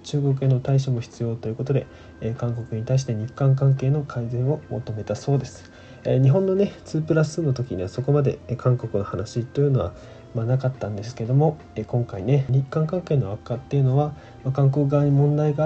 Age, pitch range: 20-39, 110-135 Hz